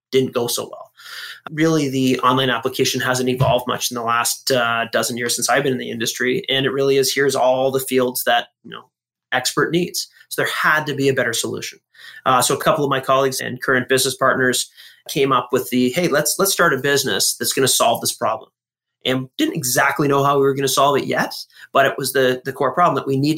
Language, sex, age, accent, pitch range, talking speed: English, male, 30-49, American, 130-160 Hz, 240 wpm